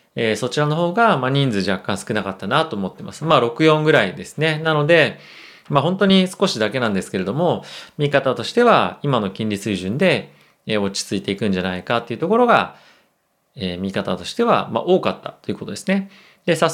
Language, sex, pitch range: Japanese, male, 110-160 Hz